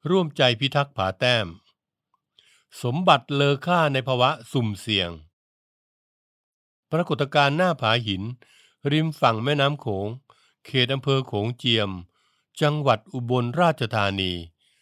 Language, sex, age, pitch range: Thai, male, 60-79, 105-140 Hz